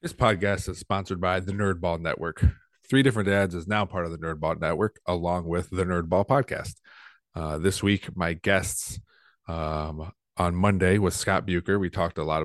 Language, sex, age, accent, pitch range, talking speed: English, male, 30-49, American, 80-95 Hz, 200 wpm